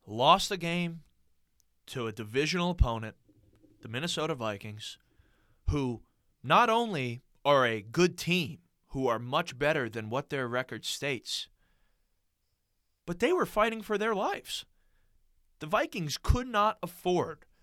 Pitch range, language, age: 120-175 Hz, English, 30-49